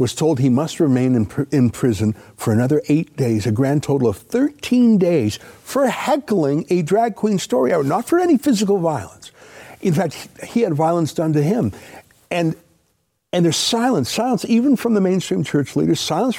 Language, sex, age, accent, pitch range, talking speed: English, male, 60-79, American, 135-215 Hz, 185 wpm